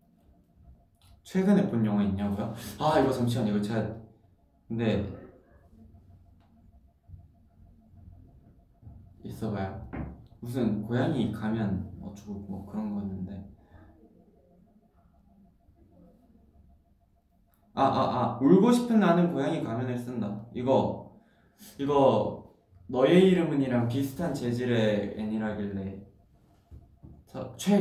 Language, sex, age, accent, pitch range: Korean, male, 20-39, native, 100-120 Hz